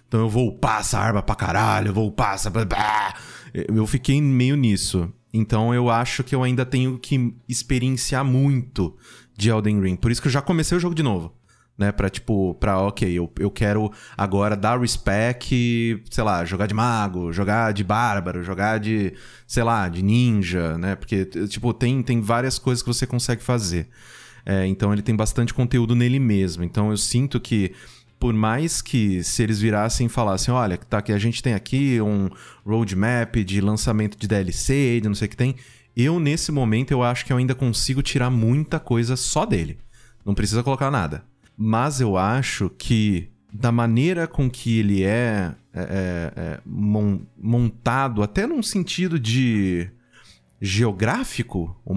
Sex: male